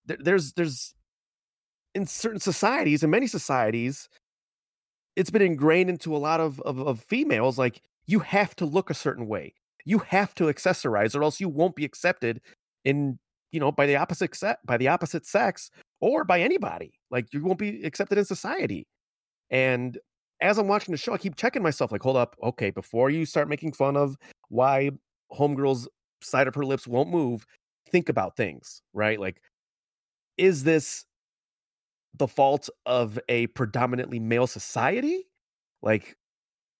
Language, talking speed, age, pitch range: English, 165 wpm, 30-49, 115-165 Hz